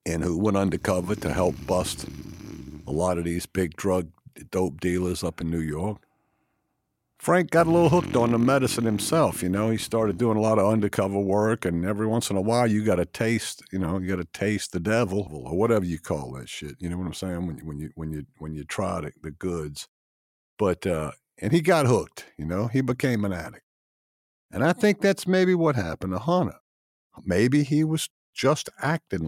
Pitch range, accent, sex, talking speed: 90-120 Hz, American, male, 210 wpm